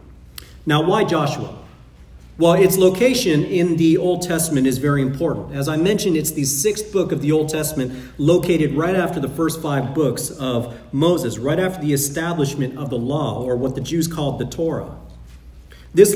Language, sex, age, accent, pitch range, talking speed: English, male, 40-59, American, 135-185 Hz, 180 wpm